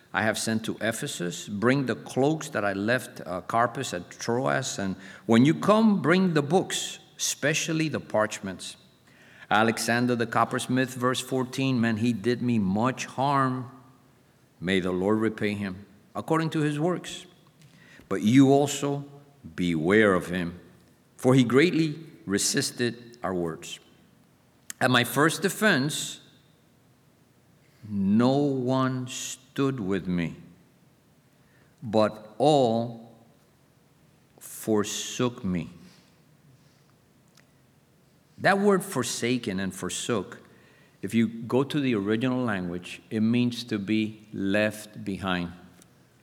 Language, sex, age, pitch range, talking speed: English, male, 50-69, 105-140 Hz, 115 wpm